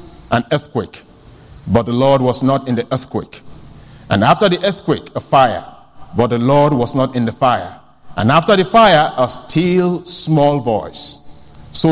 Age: 50-69